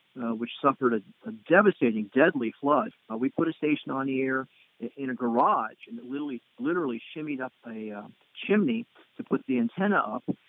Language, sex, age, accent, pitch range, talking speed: English, male, 50-69, American, 130-180 Hz, 190 wpm